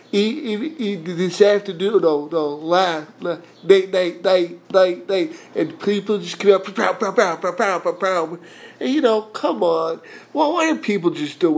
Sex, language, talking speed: male, English, 185 wpm